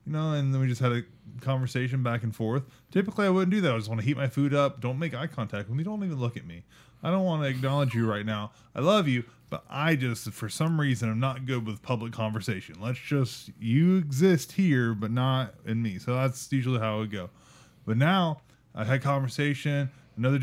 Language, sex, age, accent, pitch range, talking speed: English, male, 20-39, American, 115-145 Hz, 240 wpm